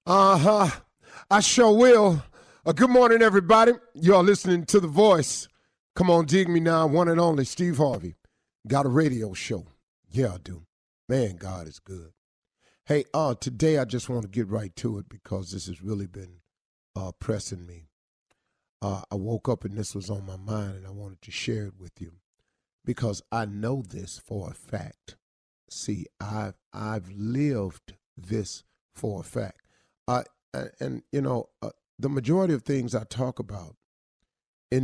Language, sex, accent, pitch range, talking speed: English, male, American, 100-135 Hz, 170 wpm